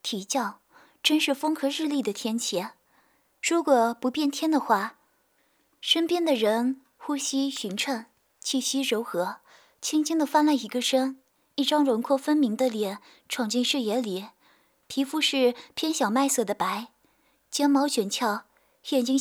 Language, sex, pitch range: Chinese, female, 230-290 Hz